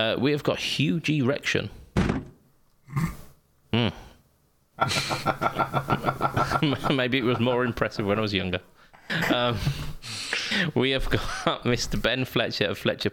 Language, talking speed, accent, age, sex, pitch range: English, 115 wpm, British, 20-39, male, 105-135 Hz